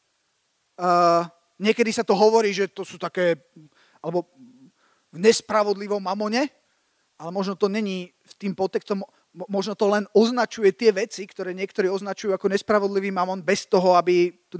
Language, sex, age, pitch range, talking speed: Slovak, male, 30-49, 195-245 Hz, 150 wpm